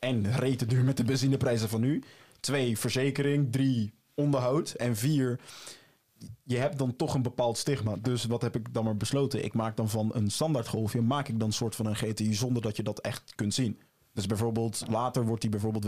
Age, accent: 20-39, Dutch